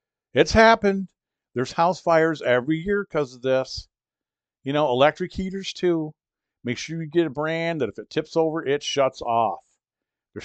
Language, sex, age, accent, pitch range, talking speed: English, male, 50-69, American, 125-165 Hz, 170 wpm